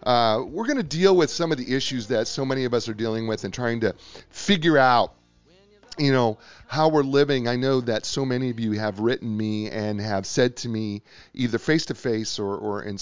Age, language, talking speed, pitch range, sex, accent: 40-59, English, 220 wpm, 105-130 Hz, male, American